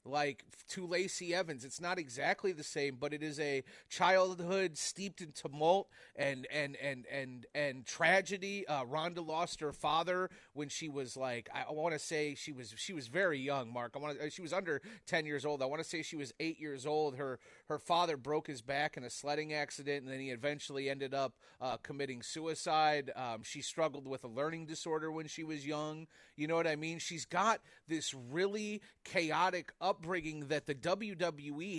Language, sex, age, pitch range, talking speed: English, male, 30-49, 150-195 Hz, 200 wpm